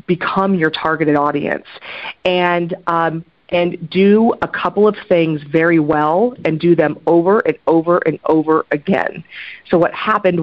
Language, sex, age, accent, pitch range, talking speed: English, female, 40-59, American, 155-185 Hz, 150 wpm